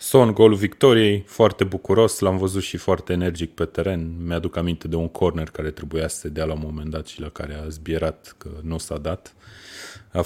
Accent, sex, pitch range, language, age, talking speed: native, male, 85-100 Hz, Romanian, 30-49, 210 wpm